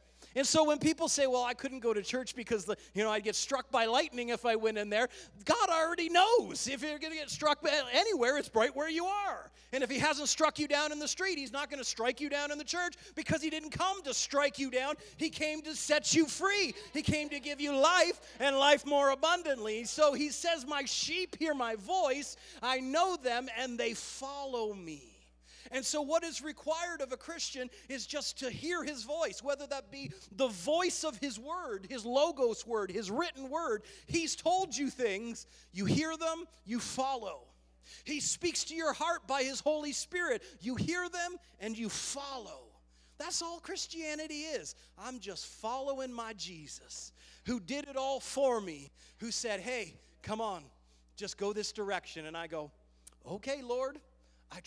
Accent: American